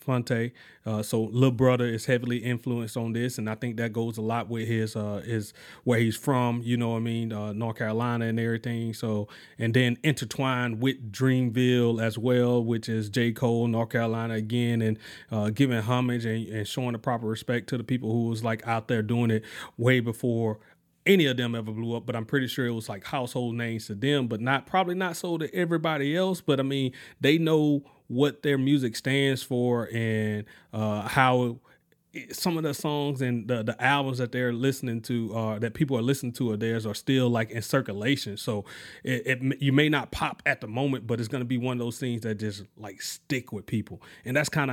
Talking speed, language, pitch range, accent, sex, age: 215 wpm, English, 115-135 Hz, American, male, 30-49